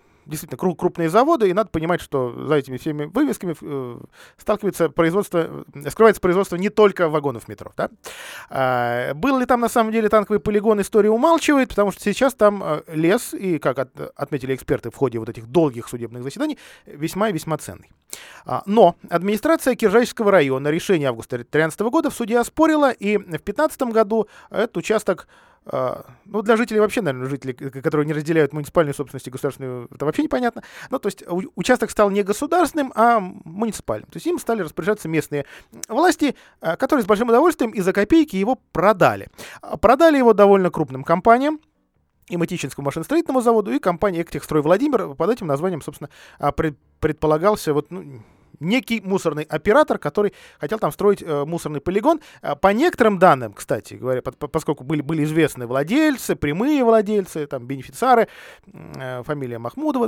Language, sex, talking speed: Russian, male, 155 wpm